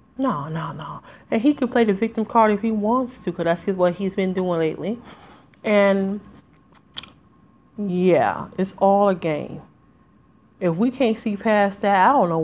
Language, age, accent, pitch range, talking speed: English, 30-49, American, 170-205 Hz, 175 wpm